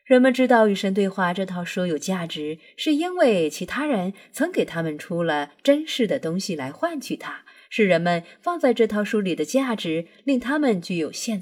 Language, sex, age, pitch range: Chinese, female, 20-39, 155-235 Hz